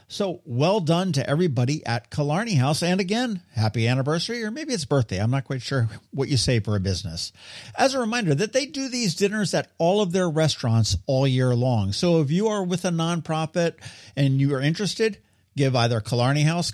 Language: English